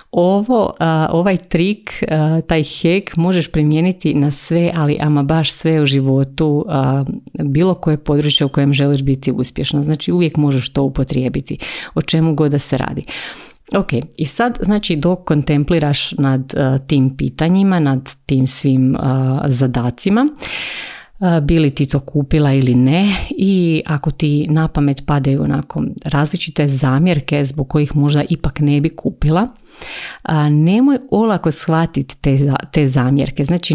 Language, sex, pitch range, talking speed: Croatian, female, 140-170 Hz, 135 wpm